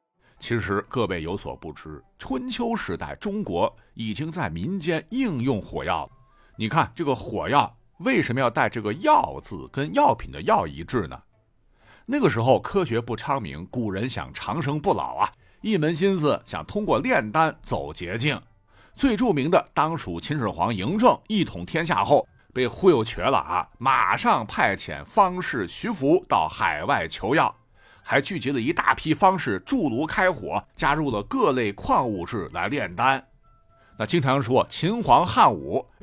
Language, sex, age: Chinese, male, 50-69